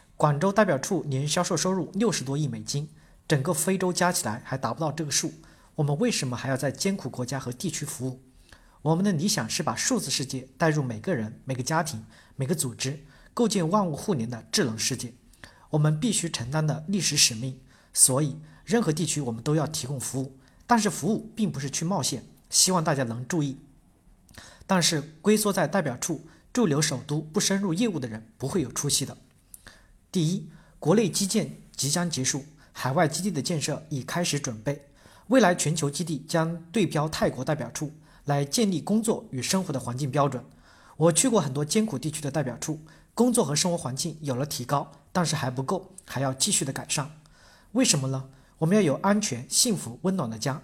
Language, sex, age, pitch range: Chinese, male, 40-59, 130-180 Hz